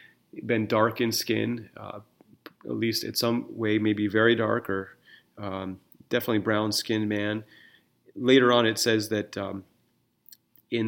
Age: 30-49